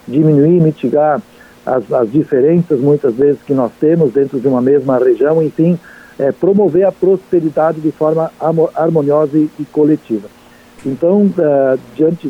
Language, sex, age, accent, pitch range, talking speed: Portuguese, male, 60-79, Brazilian, 145-175 Hz, 145 wpm